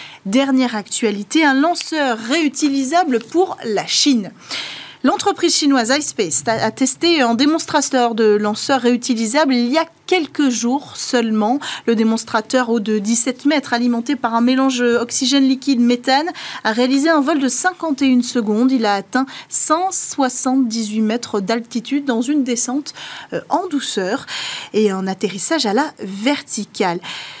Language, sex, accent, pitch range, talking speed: French, female, French, 220-285 Hz, 135 wpm